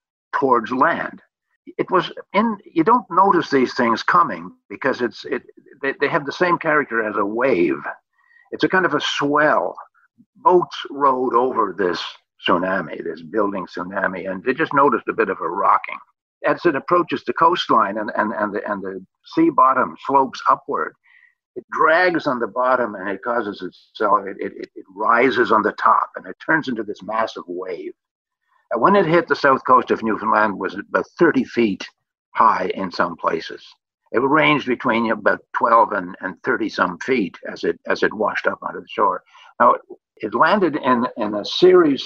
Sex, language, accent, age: male, English, American, 60-79